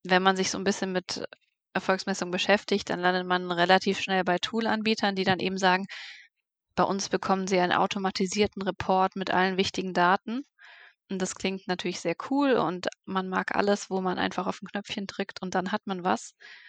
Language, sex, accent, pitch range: German, female, German, 185-200 Hz